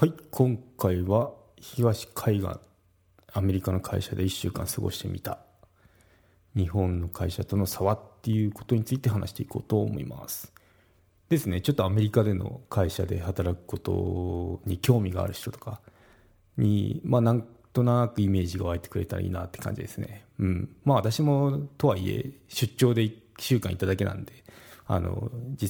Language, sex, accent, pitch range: Japanese, male, native, 95-120 Hz